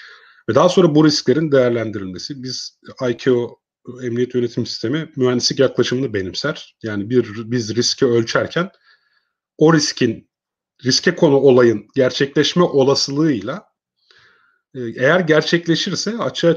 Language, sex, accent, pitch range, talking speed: Turkish, male, native, 115-155 Hz, 105 wpm